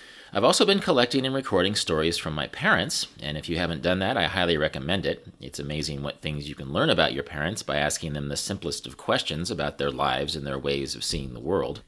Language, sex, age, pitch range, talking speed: English, male, 30-49, 80-110 Hz, 235 wpm